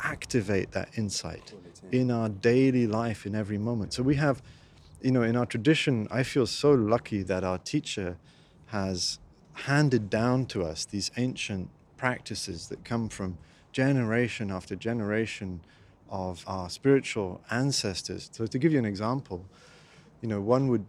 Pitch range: 95-125 Hz